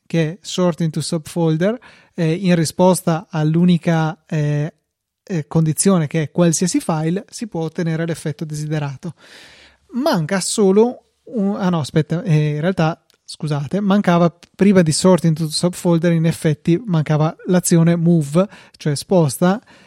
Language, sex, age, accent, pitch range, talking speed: Italian, male, 20-39, native, 155-195 Hz, 125 wpm